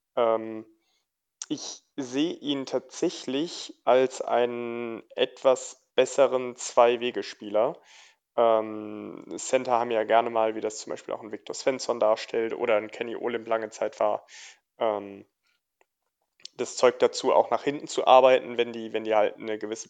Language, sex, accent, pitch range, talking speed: German, male, German, 110-135 Hz, 140 wpm